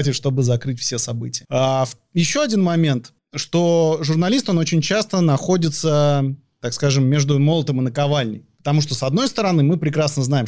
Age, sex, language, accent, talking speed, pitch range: 30-49, male, Russian, native, 160 wpm, 125-160 Hz